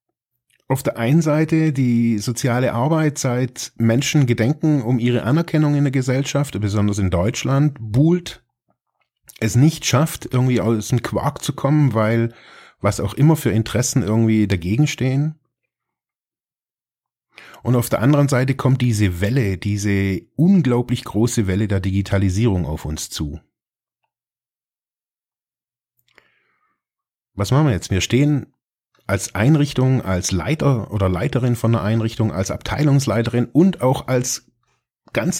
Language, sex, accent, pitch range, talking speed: German, male, German, 110-140 Hz, 125 wpm